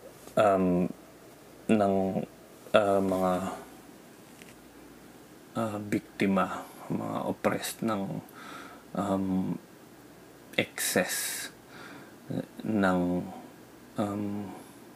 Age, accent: 20-39, native